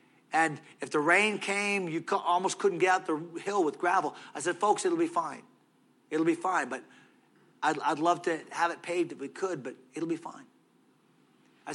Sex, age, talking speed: male, 40-59, 200 wpm